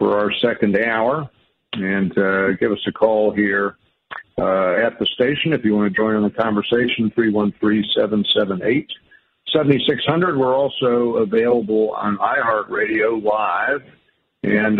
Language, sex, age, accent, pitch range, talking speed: English, male, 50-69, American, 100-120 Hz, 125 wpm